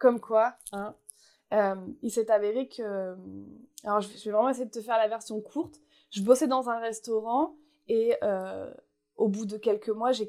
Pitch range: 215-270 Hz